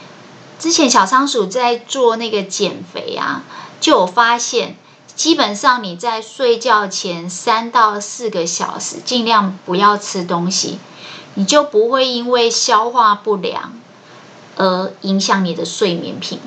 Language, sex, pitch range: Chinese, female, 195-255 Hz